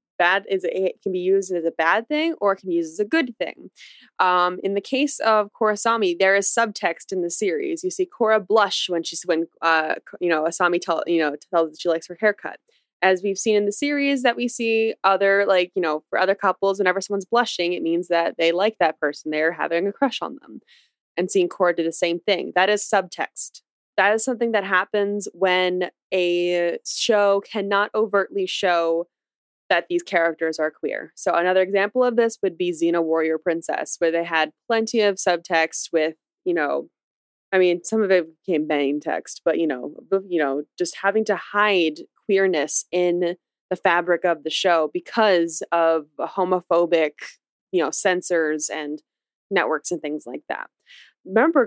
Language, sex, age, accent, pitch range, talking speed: English, female, 20-39, American, 170-210 Hz, 195 wpm